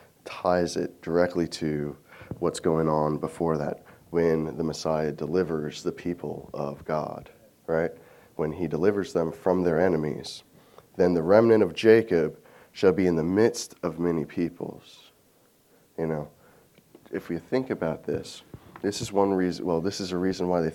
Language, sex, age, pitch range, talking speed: English, male, 30-49, 80-95 Hz, 160 wpm